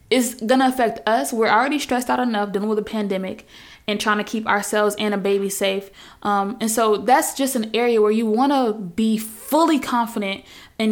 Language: English